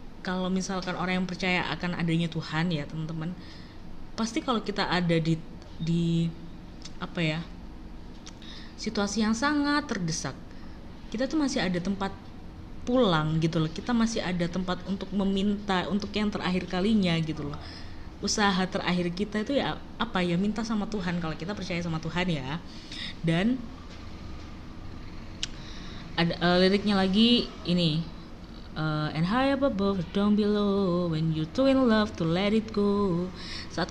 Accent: native